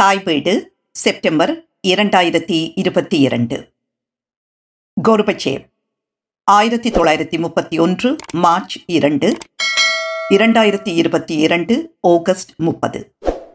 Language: Tamil